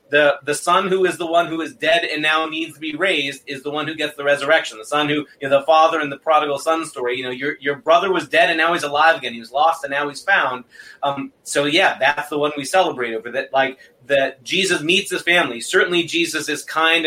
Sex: male